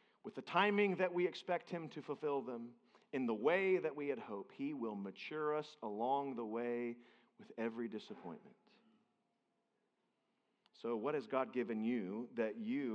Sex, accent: male, American